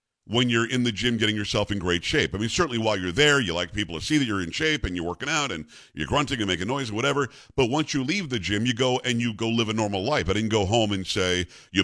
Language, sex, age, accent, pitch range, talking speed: English, male, 50-69, American, 105-135 Hz, 300 wpm